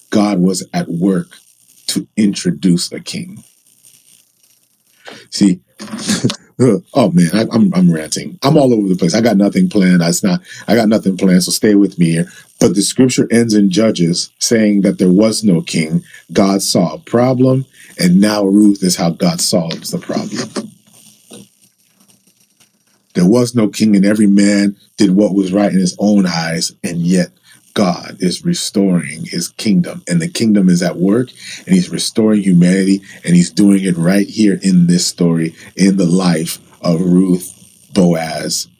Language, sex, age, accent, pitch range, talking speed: English, male, 40-59, American, 90-110 Hz, 160 wpm